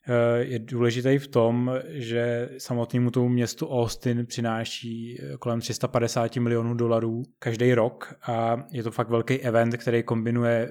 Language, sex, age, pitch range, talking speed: Czech, male, 20-39, 115-125 Hz, 135 wpm